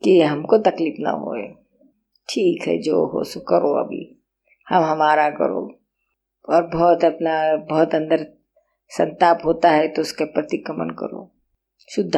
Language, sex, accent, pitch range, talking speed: Hindi, female, native, 175-265 Hz, 145 wpm